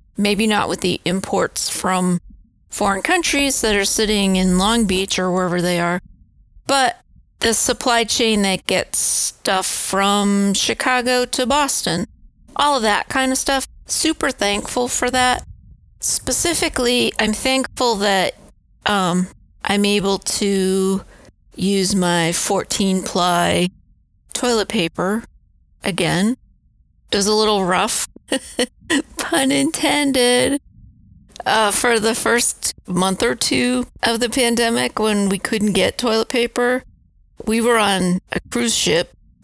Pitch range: 185-235 Hz